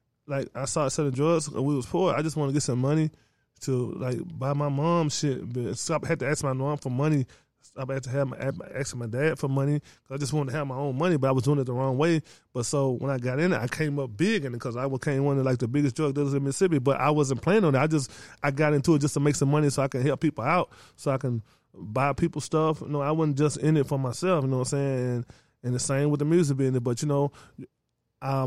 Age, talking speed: 20-39, 295 wpm